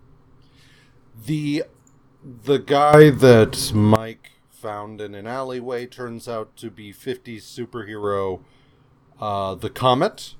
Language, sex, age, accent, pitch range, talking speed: English, male, 40-59, American, 115-135 Hz, 105 wpm